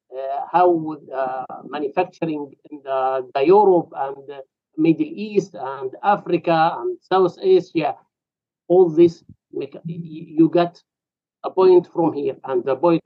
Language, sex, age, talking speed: English, male, 50-69, 140 wpm